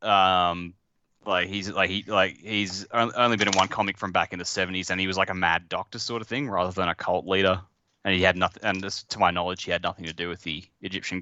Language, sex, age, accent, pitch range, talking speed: English, male, 10-29, Australian, 85-100 Hz, 260 wpm